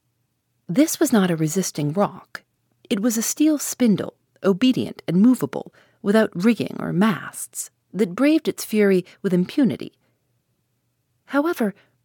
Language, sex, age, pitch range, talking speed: English, female, 40-59, 160-220 Hz, 125 wpm